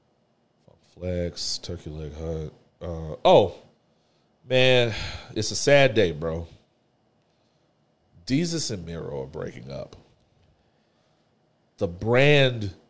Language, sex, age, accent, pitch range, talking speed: English, male, 40-59, American, 90-120 Hz, 95 wpm